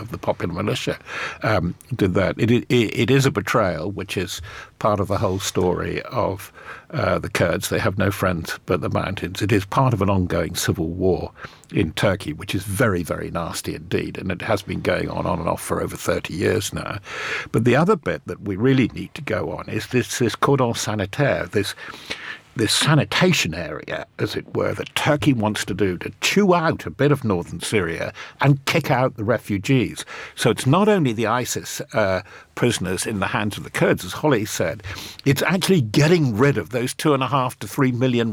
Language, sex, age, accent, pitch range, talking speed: English, male, 50-69, British, 100-135 Hz, 205 wpm